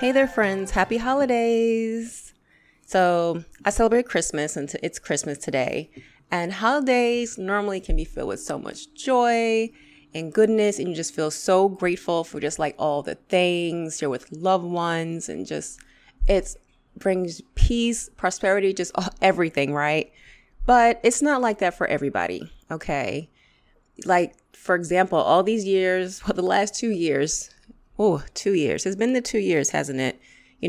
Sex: female